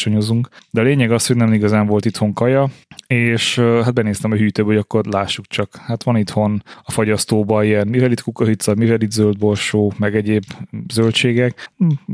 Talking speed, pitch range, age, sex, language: 180 wpm, 105-115 Hz, 20-39, male, Hungarian